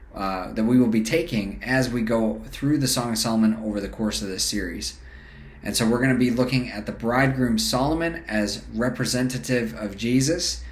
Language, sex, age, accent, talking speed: English, male, 30-49, American, 195 wpm